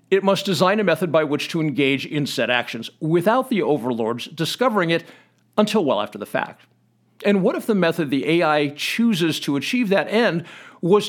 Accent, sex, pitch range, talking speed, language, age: American, male, 155-215 Hz, 190 wpm, English, 50-69